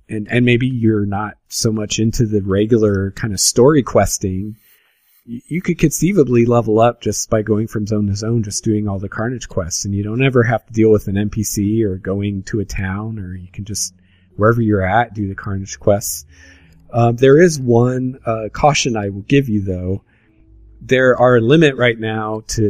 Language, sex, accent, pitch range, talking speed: English, male, American, 100-125 Hz, 200 wpm